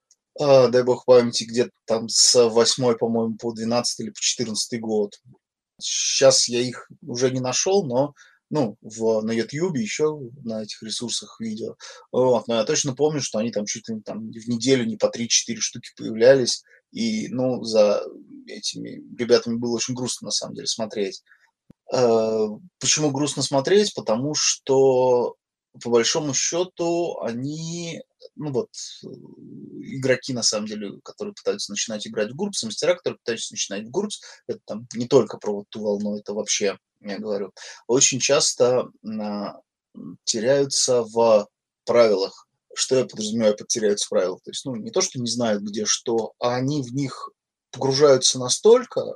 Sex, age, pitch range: male, 20-39, 115-165 Hz